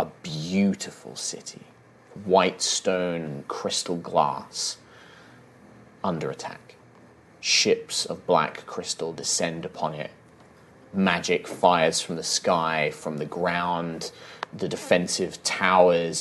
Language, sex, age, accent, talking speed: English, male, 30-49, British, 105 wpm